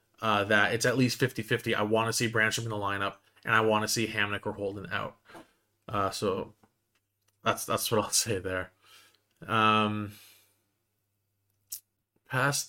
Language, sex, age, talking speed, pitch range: English, male, 20-39, 155 wpm, 105-130 Hz